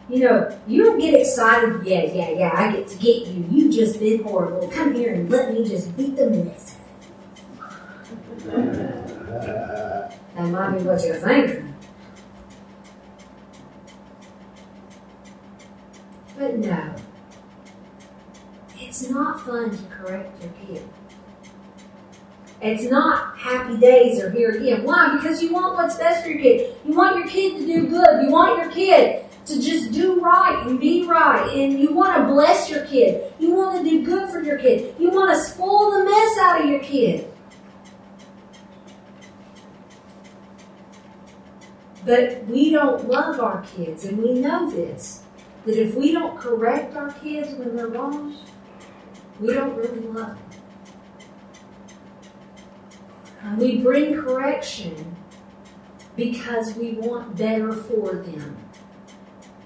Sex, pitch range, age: female, 225-315 Hz, 40-59